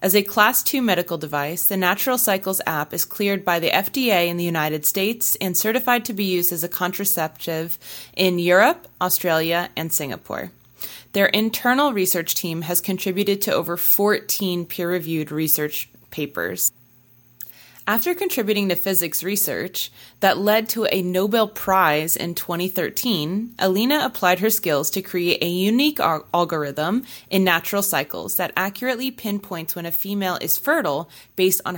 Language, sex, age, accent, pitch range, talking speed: English, female, 20-39, American, 165-205 Hz, 150 wpm